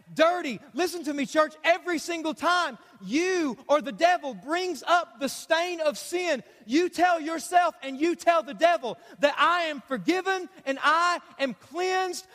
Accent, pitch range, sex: American, 275-340 Hz, male